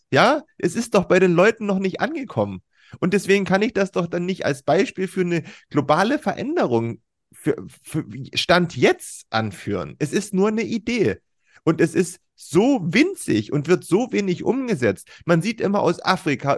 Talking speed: 175 wpm